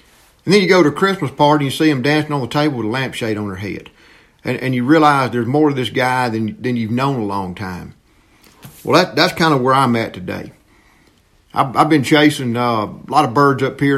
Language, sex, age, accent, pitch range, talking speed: English, male, 50-69, American, 110-145 Hz, 250 wpm